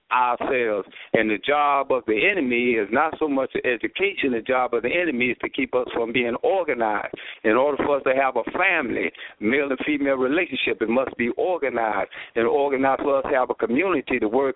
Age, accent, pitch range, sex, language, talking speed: 60-79, American, 120-145 Hz, male, English, 210 wpm